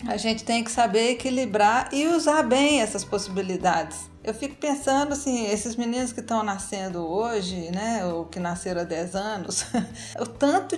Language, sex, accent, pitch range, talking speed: Portuguese, female, Brazilian, 195-255 Hz, 165 wpm